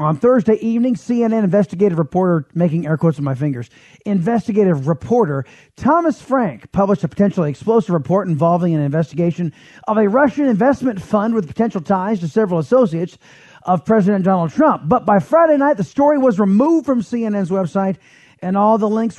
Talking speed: 170 wpm